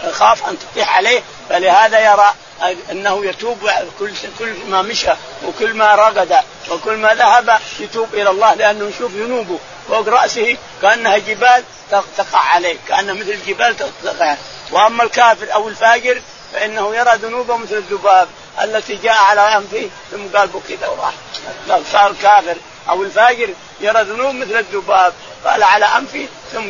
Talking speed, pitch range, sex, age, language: 135 wpm, 195-235 Hz, male, 50-69, Arabic